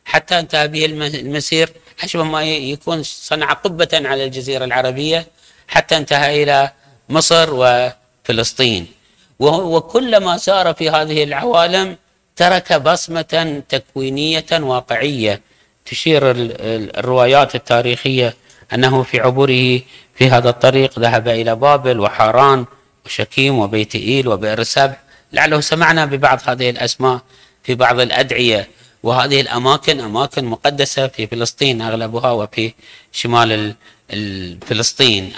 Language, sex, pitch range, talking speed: Arabic, male, 120-155 Hz, 105 wpm